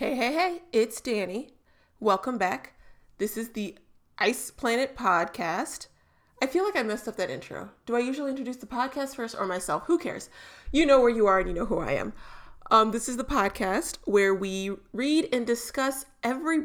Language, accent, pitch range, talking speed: English, American, 210-280 Hz, 195 wpm